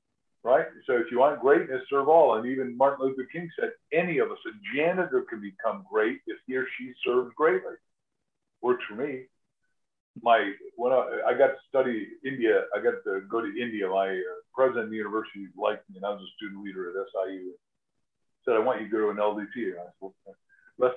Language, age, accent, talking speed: English, 50-69, American, 205 wpm